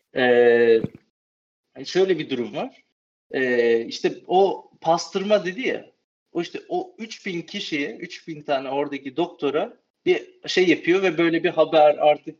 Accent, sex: native, male